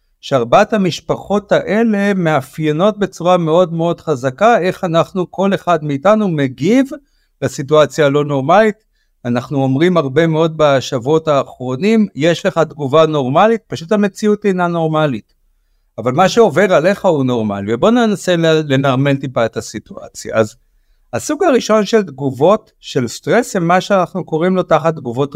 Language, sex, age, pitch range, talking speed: Hebrew, male, 60-79, 135-195 Hz, 135 wpm